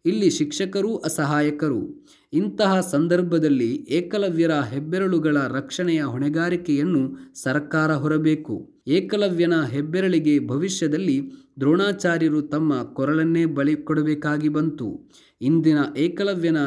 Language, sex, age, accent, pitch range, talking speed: Kannada, male, 20-39, native, 145-180 Hz, 75 wpm